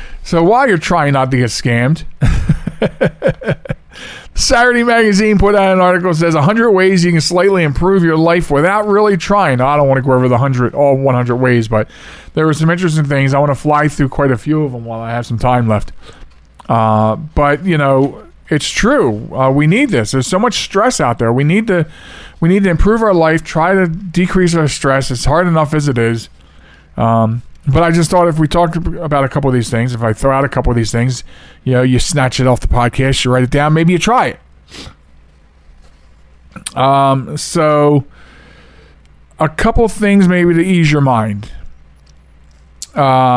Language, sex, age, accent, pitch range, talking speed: English, male, 40-59, American, 120-170 Hz, 205 wpm